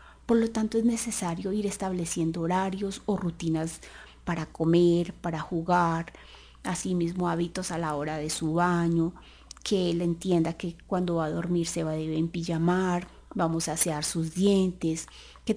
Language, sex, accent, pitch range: Spanish, female, Colombian, 165-220 Hz